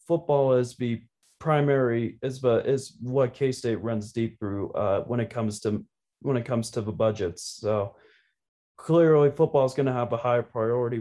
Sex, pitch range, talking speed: male, 115-140 Hz, 185 wpm